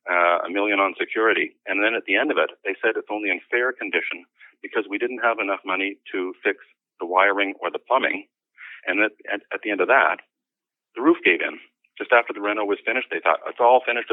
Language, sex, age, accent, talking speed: English, male, 40-59, American, 235 wpm